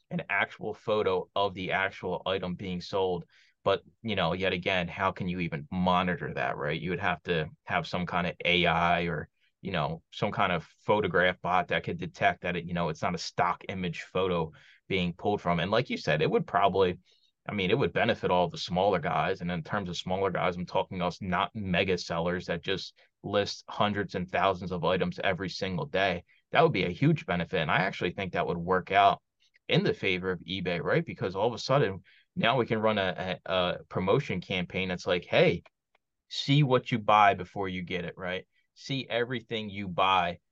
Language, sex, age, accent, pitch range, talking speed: English, male, 20-39, American, 90-105 Hz, 210 wpm